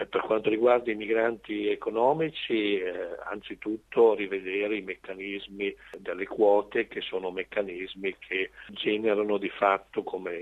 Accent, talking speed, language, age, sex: native, 120 wpm, Italian, 50-69, male